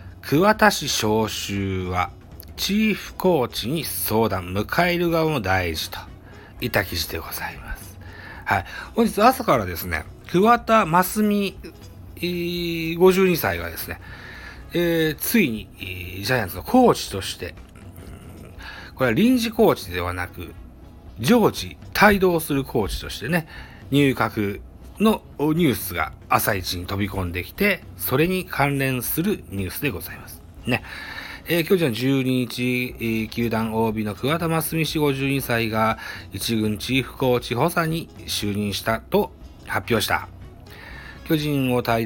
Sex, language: male, Japanese